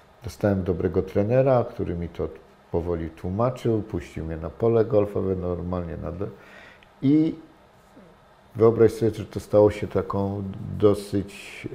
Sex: male